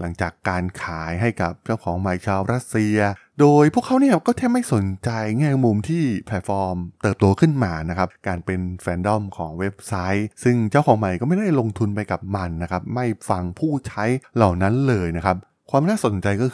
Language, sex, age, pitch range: Thai, male, 20-39, 95-125 Hz